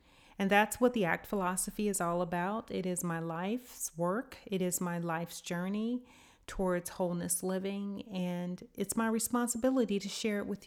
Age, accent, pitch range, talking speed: 40-59, American, 180-220 Hz, 170 wpm